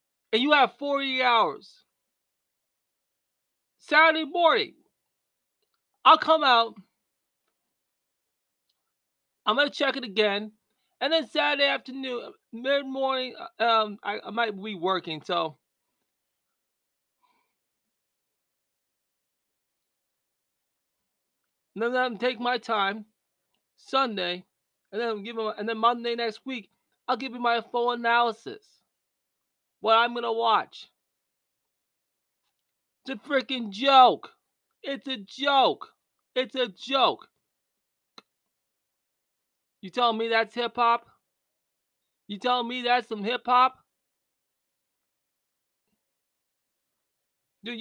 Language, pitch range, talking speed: English, 205-260 Hz, 100 wpm